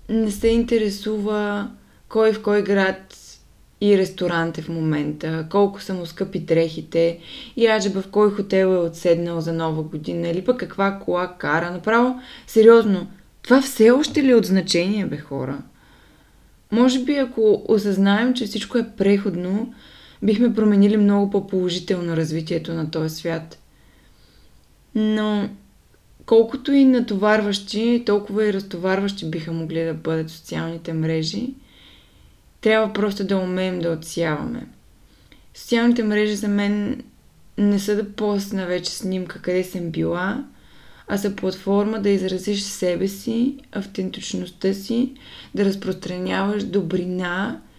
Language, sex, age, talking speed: Bulgarian, female, 20-39, 130 wpm